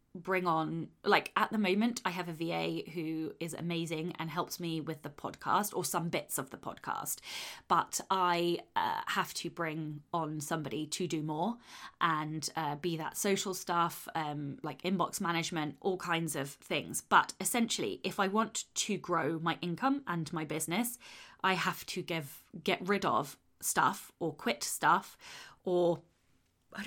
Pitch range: 165-205 Hz